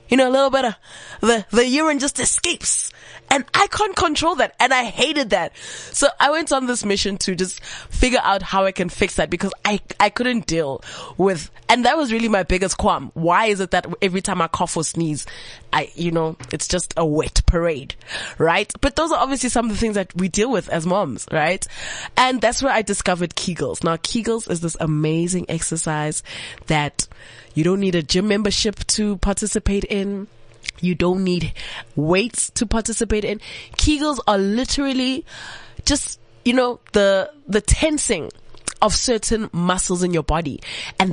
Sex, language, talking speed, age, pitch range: female, English, 185 wpm, 20-39, 170-235 Hz